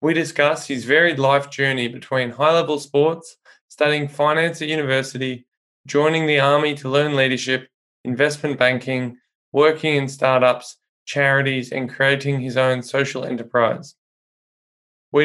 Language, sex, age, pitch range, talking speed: English, male, 20-39, 130-145 Hz, 125 wpm